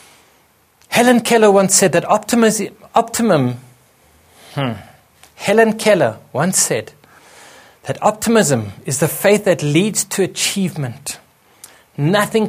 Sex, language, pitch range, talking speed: male, English, 145-200 Hz, 105 wpm